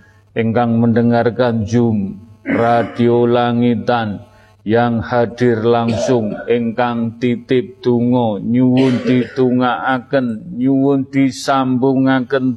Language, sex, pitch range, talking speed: Indonesian, male, 115-135 Hz, 70 wpm